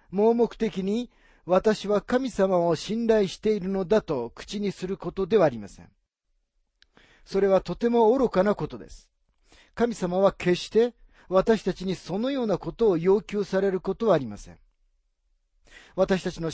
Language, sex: Japanese, male